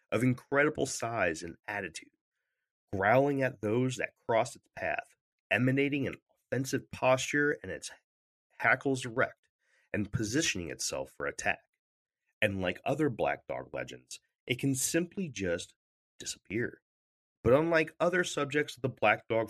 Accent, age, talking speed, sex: American, 30-49, 135 wpm, male